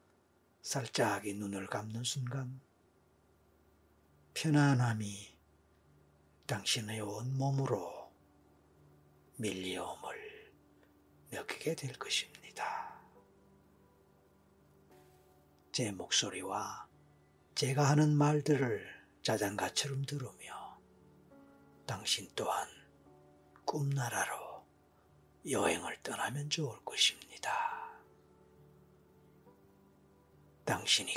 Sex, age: male, 40-59